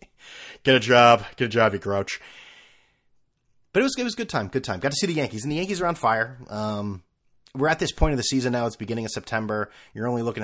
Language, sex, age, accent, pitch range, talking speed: English, male, 30-49, American, 95-130 Hz, 265 wpm